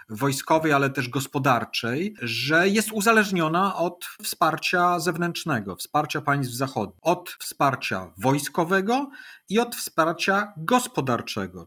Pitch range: 130-165 Hz